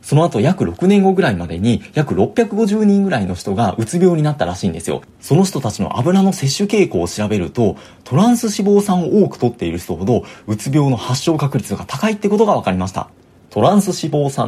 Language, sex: Japanese, male